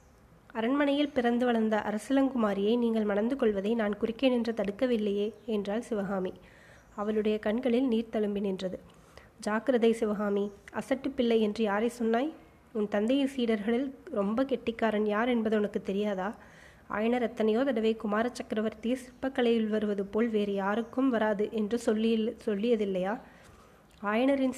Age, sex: 20-39, female